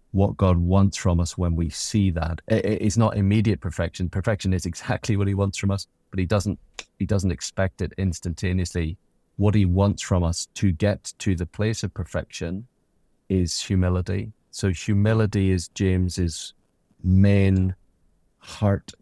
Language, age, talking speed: English, 30-49, 155 wpm